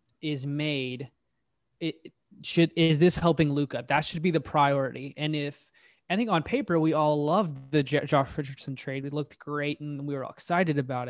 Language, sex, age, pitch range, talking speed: English, male, 20-39, 130-155 Hz, 195 wpm